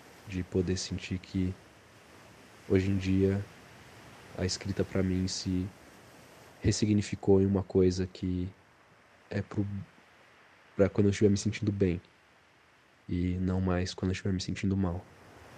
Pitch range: 95-110 Hz